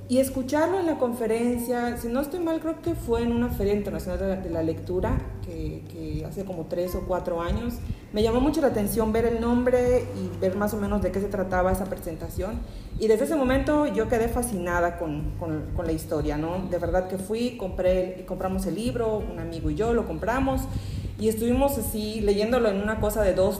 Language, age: Spanish, 40-59